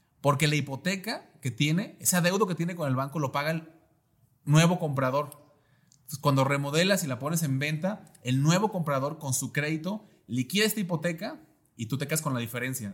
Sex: male